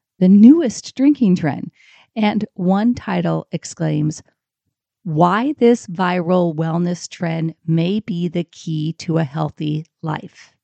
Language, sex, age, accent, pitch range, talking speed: English, female, 40-59, American, 150-185 Hz, 120 wpm